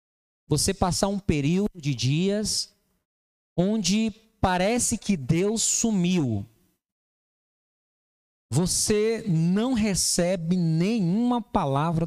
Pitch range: 160-215 Hz